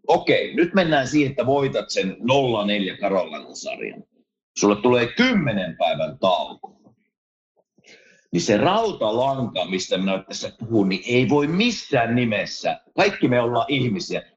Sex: male